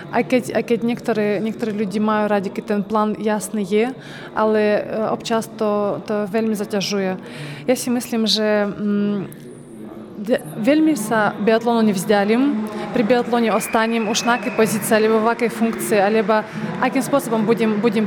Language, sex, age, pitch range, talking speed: Slovak, female, 20-39, 210-235 Hz, 125 wpm